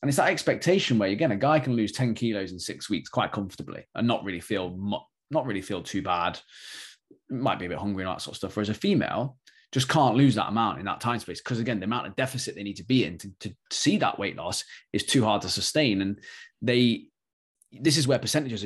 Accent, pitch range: British, 105-140 Hz